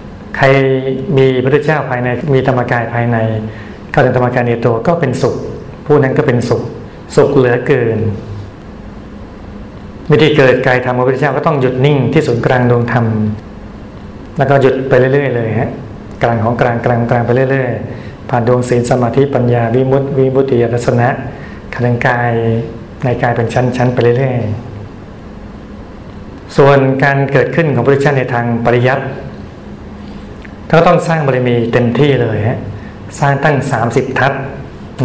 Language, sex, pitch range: Thai, male, 110-135 Hz